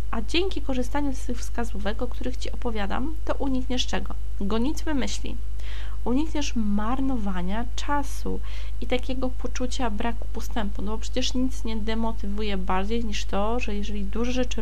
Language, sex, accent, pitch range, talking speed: Polish, female, native, 210-265 Hz, 150 wpm